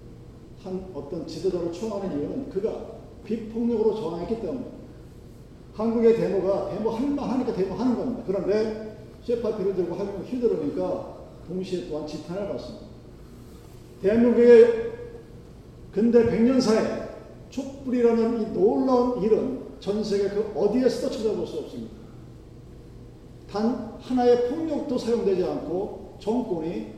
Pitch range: 175-240 Hz